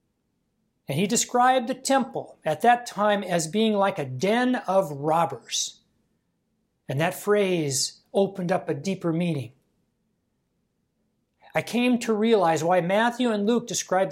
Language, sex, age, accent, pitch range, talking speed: English, male, 60-79, American, 145-200 Hz, 135 wpm